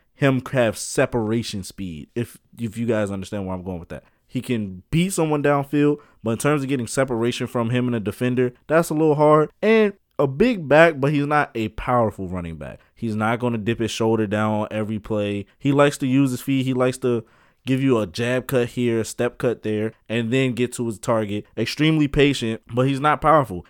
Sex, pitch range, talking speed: male, 110-140 Hz, 220 wpm